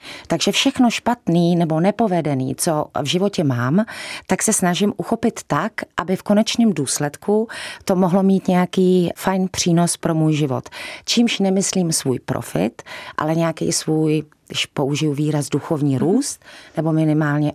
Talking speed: 140 wpm